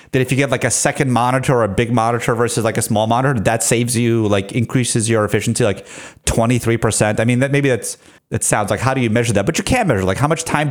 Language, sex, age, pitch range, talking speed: English, male, 30-49, 115-140 Hz, 265 wpm